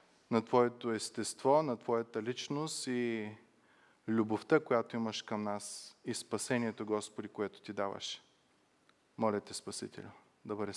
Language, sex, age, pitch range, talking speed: Bulgarian, male, 20-39, 110-145 Hz, 125 wpm